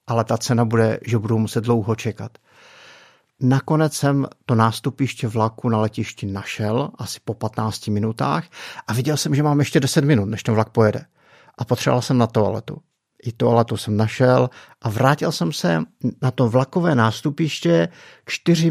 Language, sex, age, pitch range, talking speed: Czech, male, 50-69, 115-150 Hz, 165 wpm